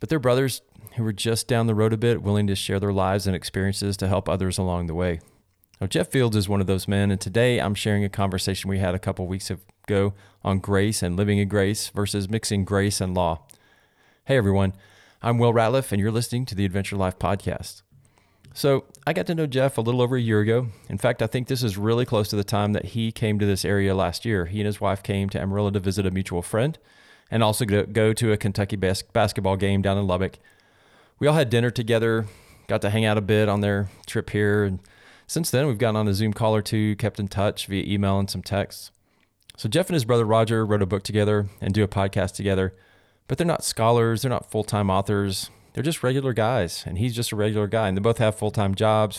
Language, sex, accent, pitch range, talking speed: English, male, American, 100-115 Hz, 240 wpm